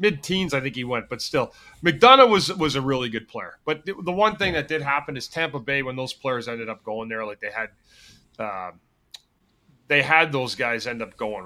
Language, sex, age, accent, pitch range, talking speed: English, male, 30-49, American, 110-150 Hz, 230 wpm